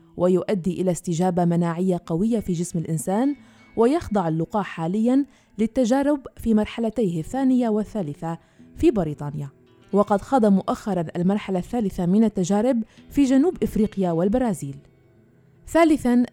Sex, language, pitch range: female, Arabic, 175-225 Hz